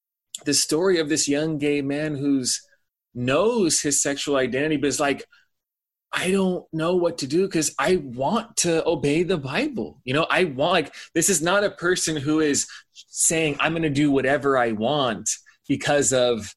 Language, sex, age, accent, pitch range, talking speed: English, male, 20-39, American, 115-155 Hz, 180 wpm